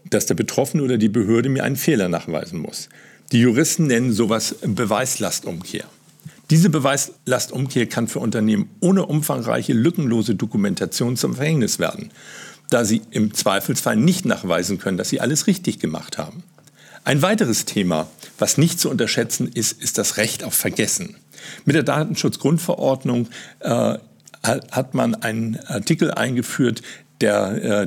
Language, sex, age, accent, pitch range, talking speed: German, male, 50-69, German, 115-165 Hz, 140 wpm